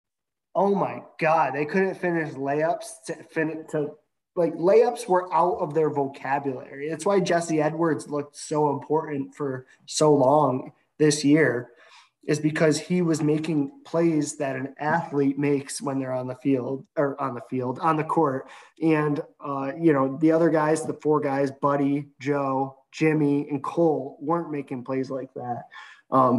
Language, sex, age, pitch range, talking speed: English, male, 20-39, 135-160 Hz, 160 wpm